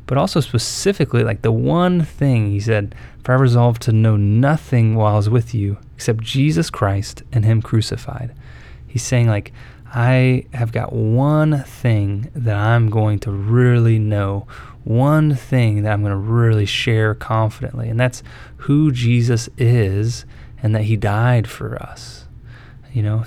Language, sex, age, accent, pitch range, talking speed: English, male, 20-39, American, 110-130 Hz, 160 wpm